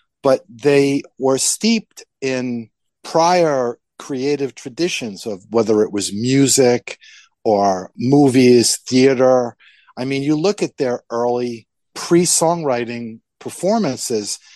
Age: 50-69